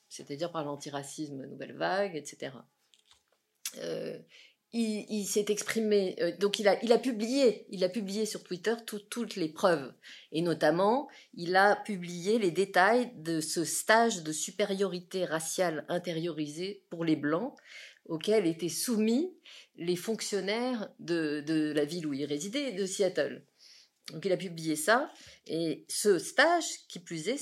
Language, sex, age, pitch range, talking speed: French, female, 50-69, 165-225 Hz, 140 wpm